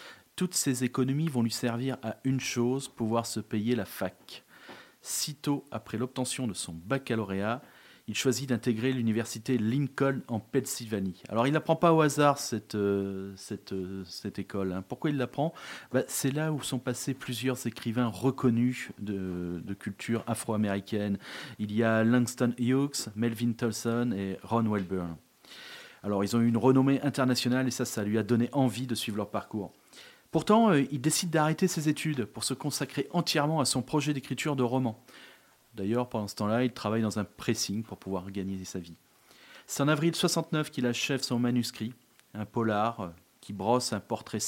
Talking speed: 175 wpm